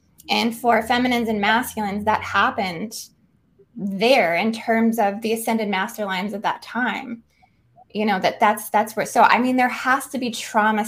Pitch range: 200-235 Hz